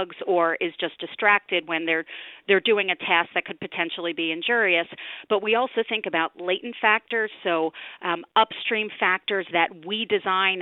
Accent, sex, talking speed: American, female, 165 wpm